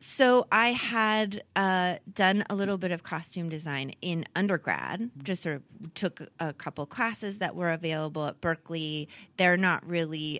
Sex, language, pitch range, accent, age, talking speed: female, English, 155-200 Hz, American, 30-49, 160 wpm